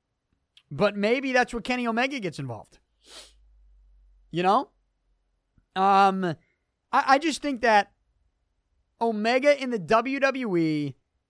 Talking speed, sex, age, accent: 105 wpm, male, 30-49, American